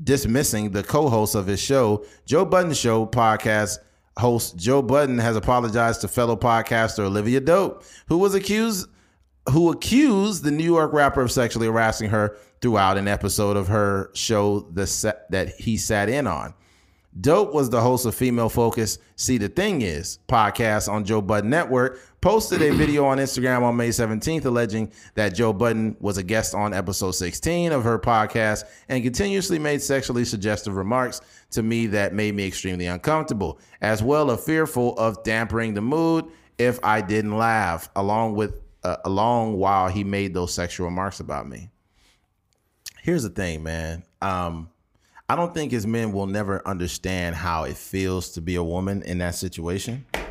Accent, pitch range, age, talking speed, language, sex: American, 100-125 Hz, 30-49, 170 wpm, English, male